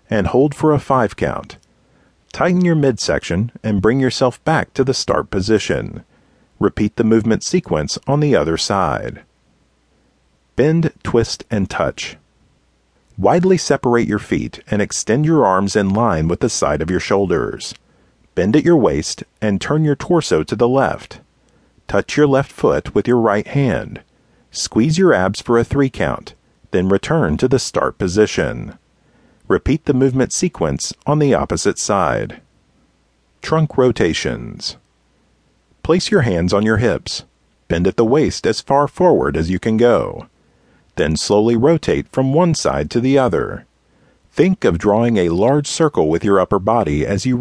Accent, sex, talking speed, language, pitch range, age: American, male, 160 wpm, English, 100-145 Hz, 40-59